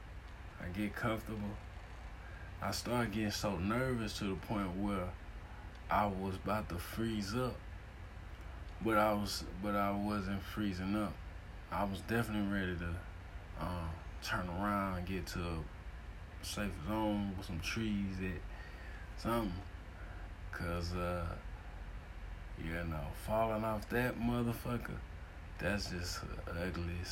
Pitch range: 85-105 Hz